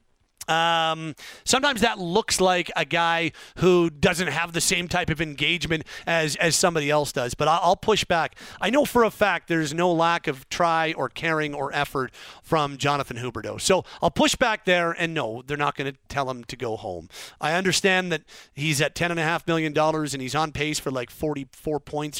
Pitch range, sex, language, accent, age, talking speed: 150-195 Hz, male, English, American, 40-59, 225 wpm